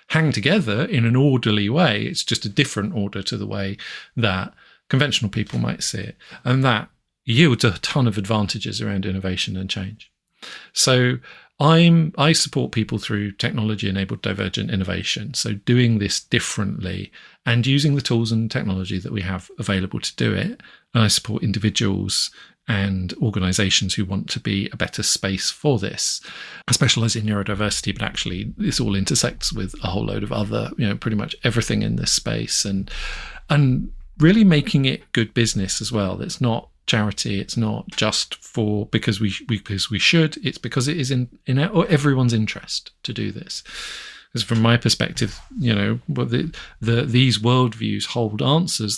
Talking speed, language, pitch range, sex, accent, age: 170 wpm, English, 105-125 Hz, male, British, 40-59